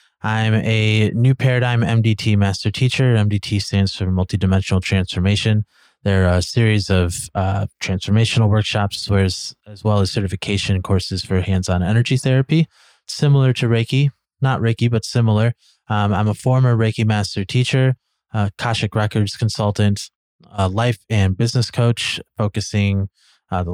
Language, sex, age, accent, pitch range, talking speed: English, male, 20-39, American, 95-115 Hz, 140 wpm